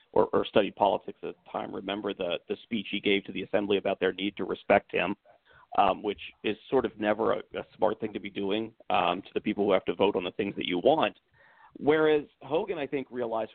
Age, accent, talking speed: 50-69, American, 235 wpm